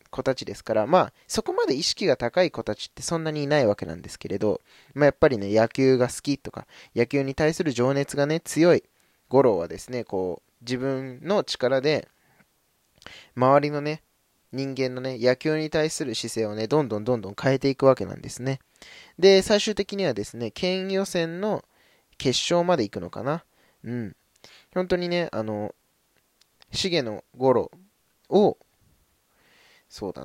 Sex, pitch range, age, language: male, 110-160 Hz, 20-39, Japanese